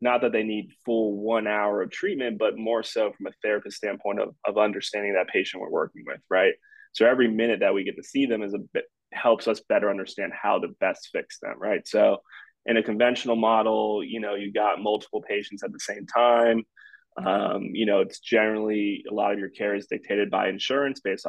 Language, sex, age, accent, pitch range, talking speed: English, male, 20-39, American, 100-120 Hz, 215 wpm